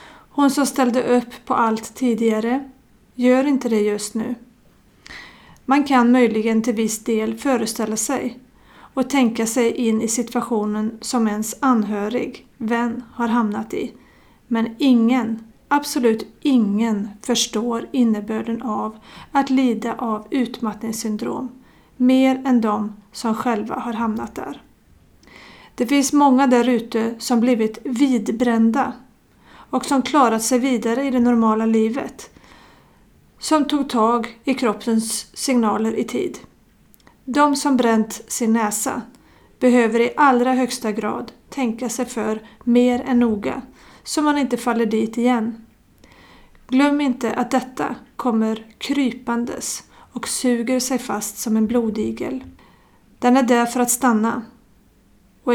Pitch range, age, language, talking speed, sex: 225-255 Hz, 40-59, Swedish, 130 wpm, female